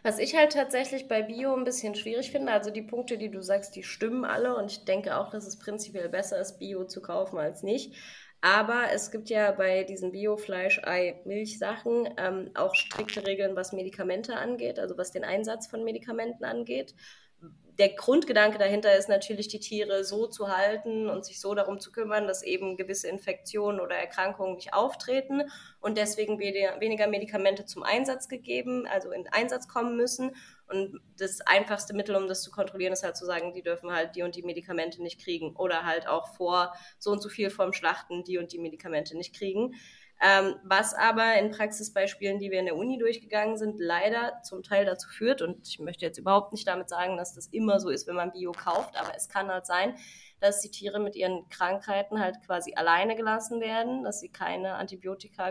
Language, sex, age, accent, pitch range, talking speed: German, female, 20-39, German, 185-215 Hz, 195 wpm